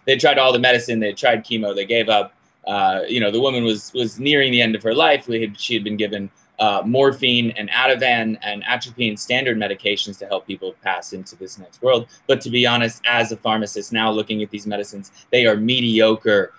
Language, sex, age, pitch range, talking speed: English, male, 20-39, 105-125 Hz, 220 wpm